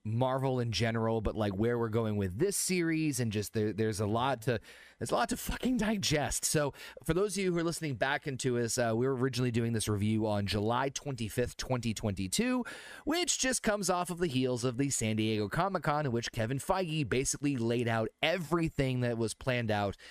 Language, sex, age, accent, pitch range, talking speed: English, male, 30-49, American, 105-145 Hz, 205 wpm